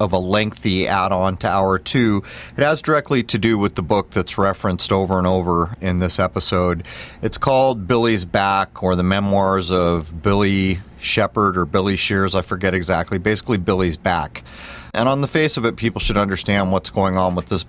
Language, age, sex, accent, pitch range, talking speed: English, 40-59, male, American, 95-115 Hz, 190 wpm